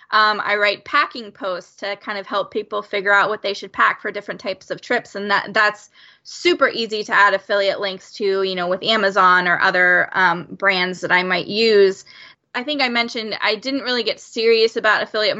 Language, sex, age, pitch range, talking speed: English, female, 20-39, 195-230 Hz, 210 wpm